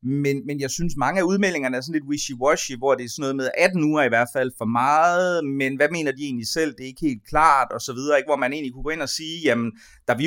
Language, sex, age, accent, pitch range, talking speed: Danish, male, 30-49, native, 120-160 Hz, 275 wpm